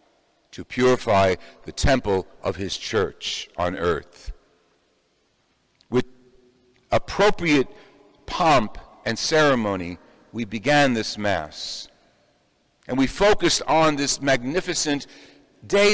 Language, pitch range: English, 125-185 Hz